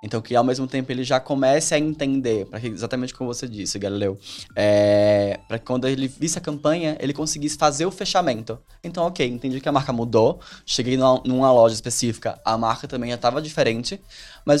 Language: Portuguese